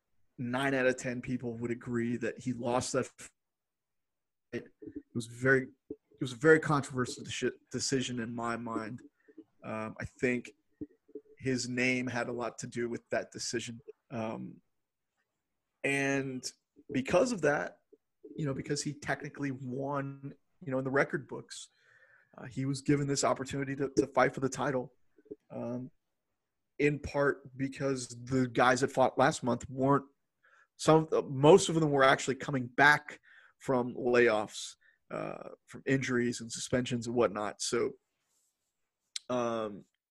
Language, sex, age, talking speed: English, male, 30-49, 145 wpm